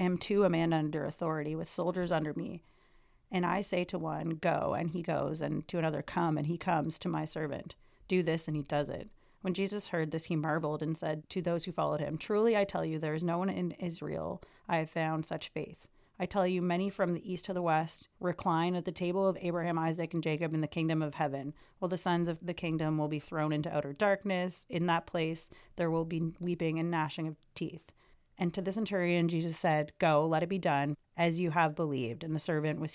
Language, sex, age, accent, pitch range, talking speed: English, female, 30-49, American, 155-180 Hz, 235 wpm